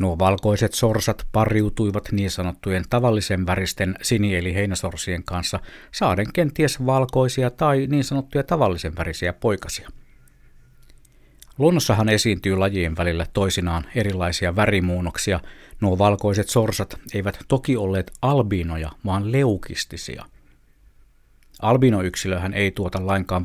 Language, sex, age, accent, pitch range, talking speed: Finnish, male, 60-79, native, 90-115 Hz, 100 wpm